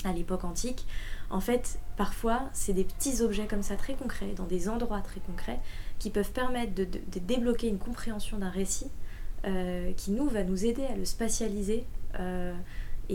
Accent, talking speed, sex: French, 185 wpm, female